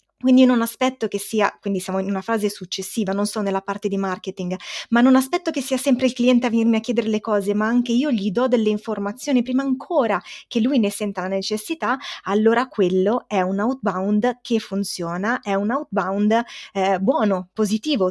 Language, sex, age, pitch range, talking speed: Italian, female, 20-39, 195-245 Hz, 200 wpm